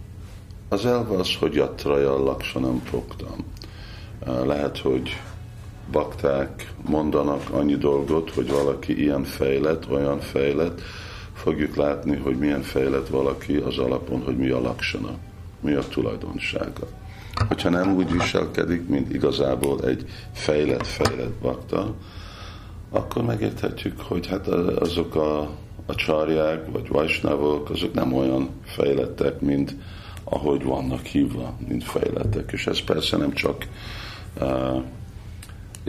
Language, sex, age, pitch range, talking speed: Hungarian, male, 50-69, 70-95 Hz, 115 wpm